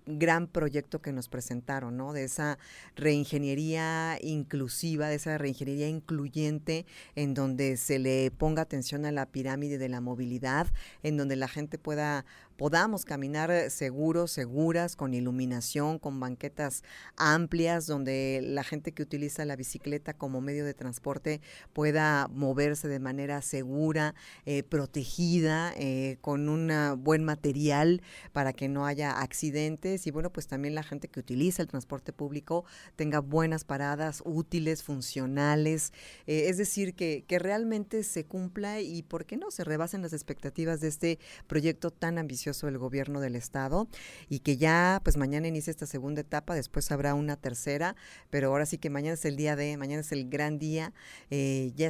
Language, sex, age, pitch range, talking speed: Spanish, female, 40-59, 140-160 Hz, 160 wpm